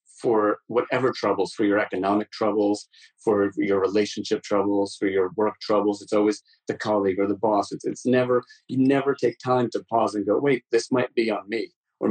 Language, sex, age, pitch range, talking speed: English, male, 30-49, 100-120 Hz, 200 wpm